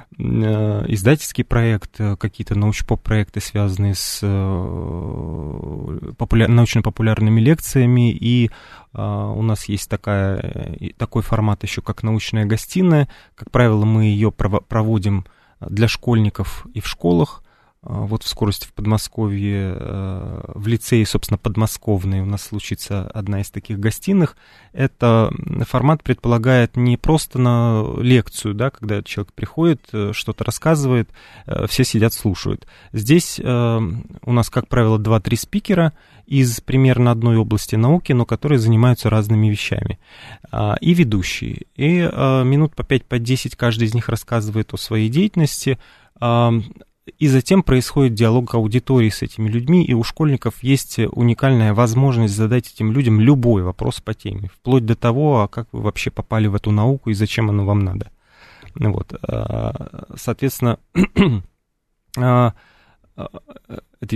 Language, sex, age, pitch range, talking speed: Russian, male, 20-39, 105-125 Hz, 125 wpm